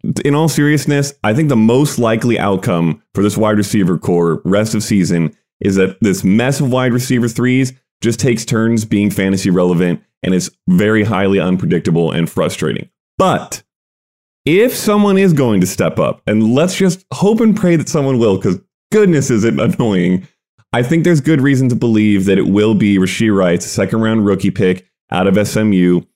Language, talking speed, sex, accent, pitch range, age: English, 185 wpm, male, American, 95-140 Hz, 30-49